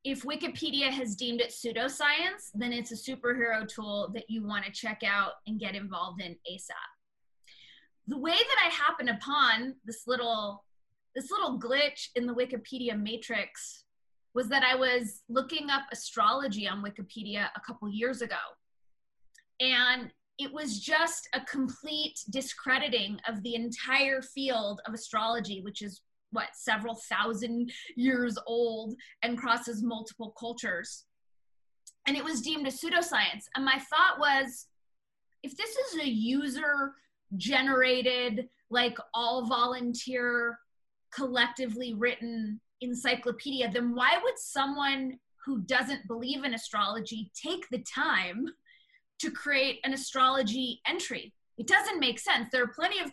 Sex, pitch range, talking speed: female, 230-275 Hz, 135 wpm